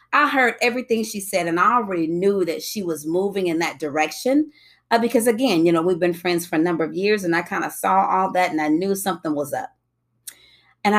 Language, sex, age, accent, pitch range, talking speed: English, female, 30-49, American, 165-245 Hz, 235 wpm